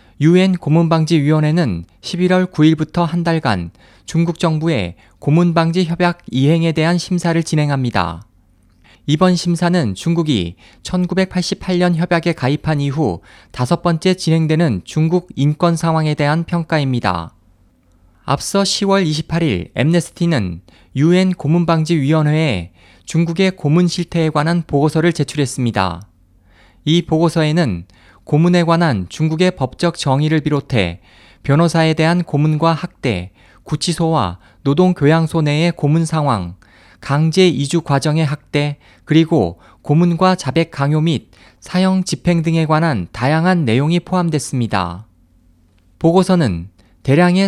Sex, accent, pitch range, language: male, native, 115-170 Hz, Korean